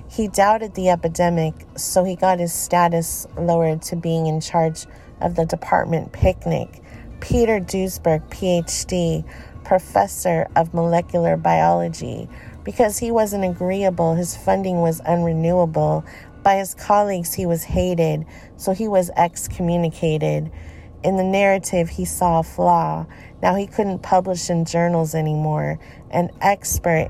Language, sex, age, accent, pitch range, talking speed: English, female, 40-59, American, 160-190 Hz, 130 wpm